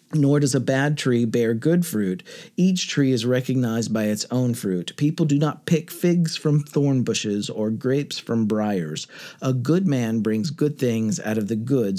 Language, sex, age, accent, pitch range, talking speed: English, male, 40-59, American, 110-145 Hz, 190 wpm